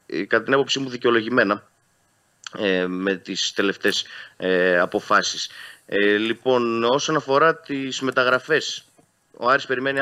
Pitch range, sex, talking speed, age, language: 95-115 Hz, male, 120 wpm, 30-49, Greek